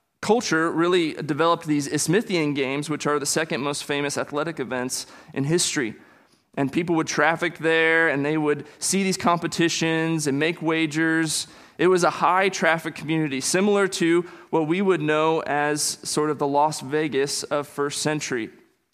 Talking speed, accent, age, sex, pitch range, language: 160 wpm, American, 30-49, male, 145-170 Hz, English